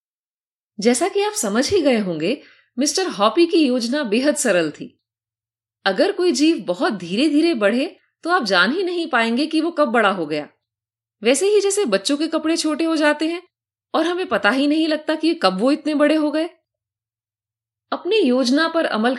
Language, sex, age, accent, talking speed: Hindi, female, 30-49, native, 190 wpm